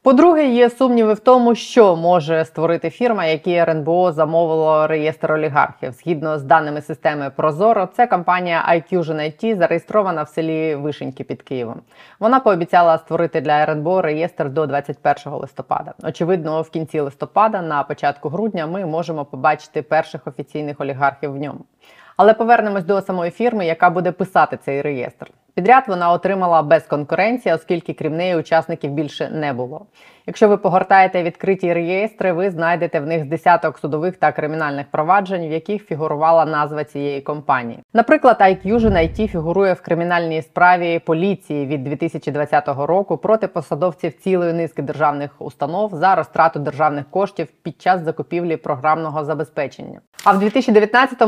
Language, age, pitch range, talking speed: Ukrainian, 20-39, 155-185 Hz, 145 wpm